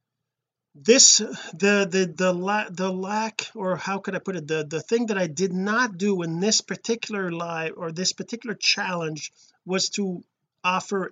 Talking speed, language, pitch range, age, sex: 165 wpm, English, 160-205 Hz, 40-59, male